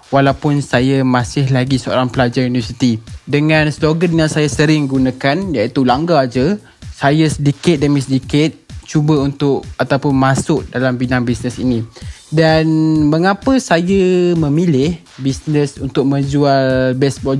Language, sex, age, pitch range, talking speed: Malay, male, 20-39, 135-165 Hz, 125 wpm